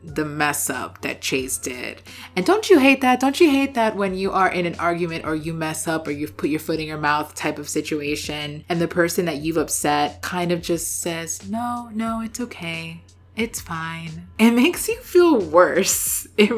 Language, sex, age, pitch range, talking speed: English, female, 20-39, 150-200 Hz, 215 wpm